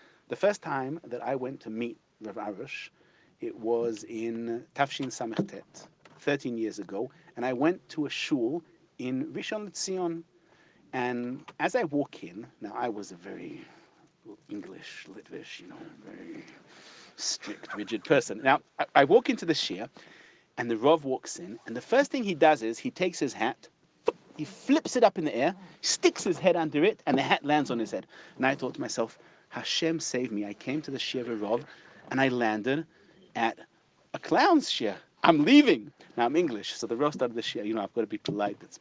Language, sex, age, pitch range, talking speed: English, male, 40-59, 115-185 Hz, 200 wpm